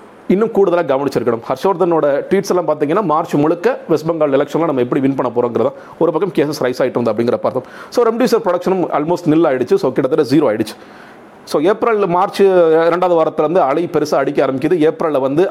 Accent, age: native, 40-59